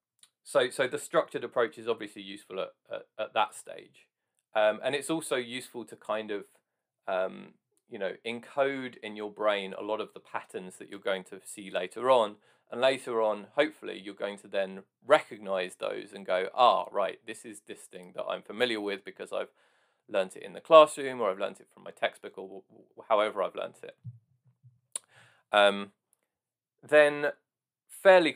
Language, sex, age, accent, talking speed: English, male, 20-39, British, 180 wpm